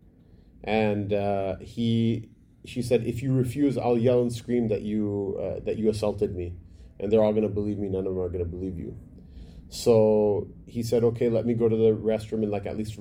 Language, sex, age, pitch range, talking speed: English, male, 30-49, 100-120 Hz, 220 wpm